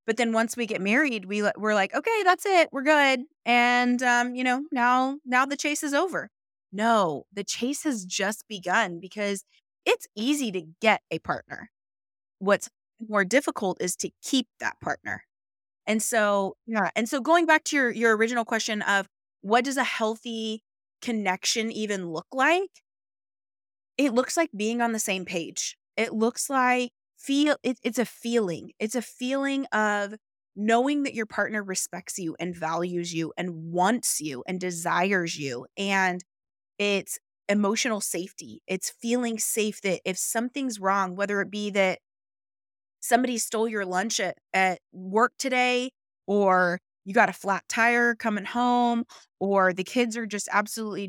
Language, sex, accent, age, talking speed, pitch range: English, female, American, 20-39, 160 wpm, 190-245 Hz